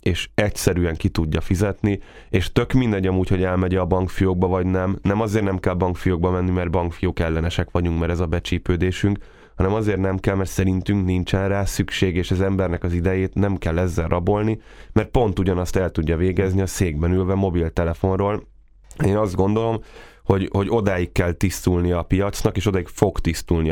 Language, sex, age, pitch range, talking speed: Hungarian, male, 10-29, 85-95 Hz, 180 wpm